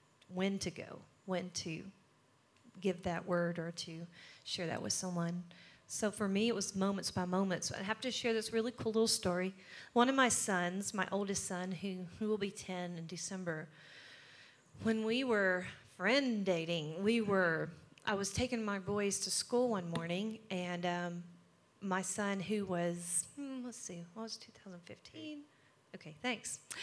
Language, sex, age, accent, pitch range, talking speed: English, female, 40-59, American, 180-230 Hz, 170 wpm